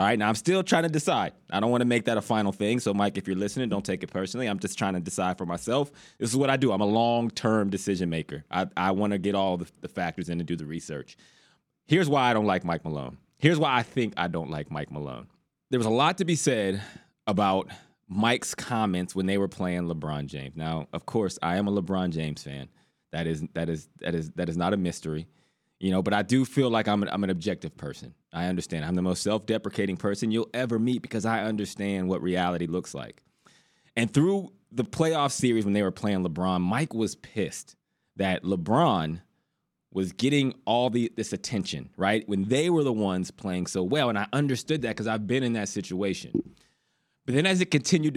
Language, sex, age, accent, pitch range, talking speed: English, male, 20-39, American, 90-125 Hz, 230 wpm